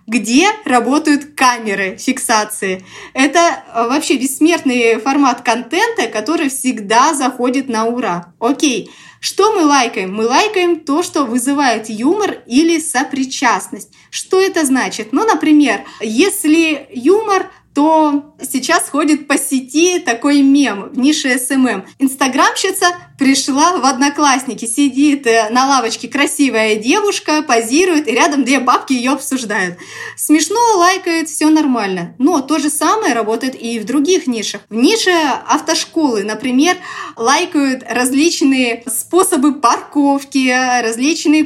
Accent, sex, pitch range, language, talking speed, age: native, female, 250-330 Hz, Russian, 115 wpm, 20-39